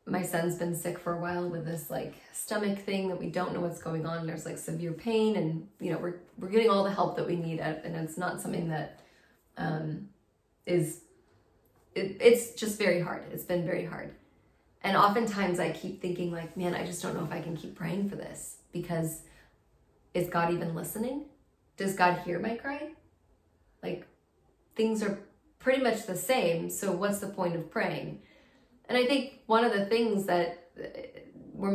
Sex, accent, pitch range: female, American, 170-205 Hz